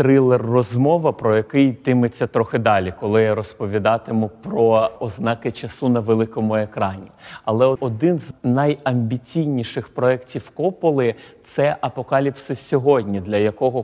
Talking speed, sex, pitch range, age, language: 115 wpm, male, 110-125 Hz, 30-49, Ukrainian